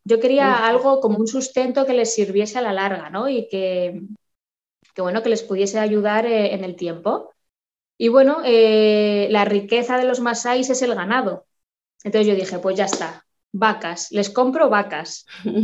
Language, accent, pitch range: Spanish, Spanish, 200-245 Hz